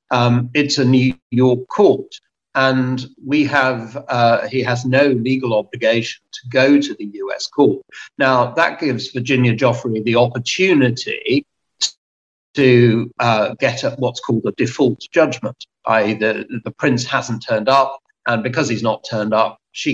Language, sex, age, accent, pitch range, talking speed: English, male, 50-69, British, 115-140 Hz, 155 wpm